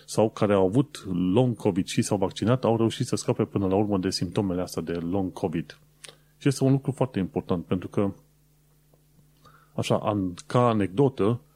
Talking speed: 170 wpm